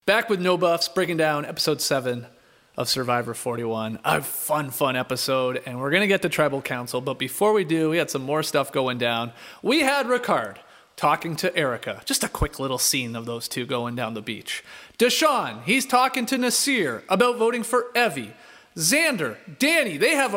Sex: male